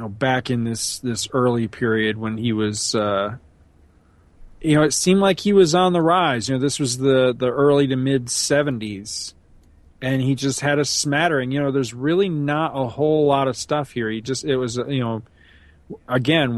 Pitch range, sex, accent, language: 110-140 Hz, male, American, English